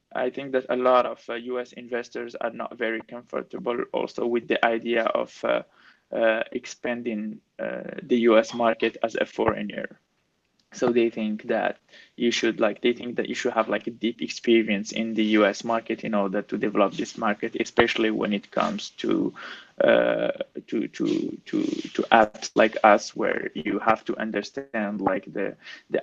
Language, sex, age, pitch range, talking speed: English, male, 20-39, 110-125 Hz, 175 wpm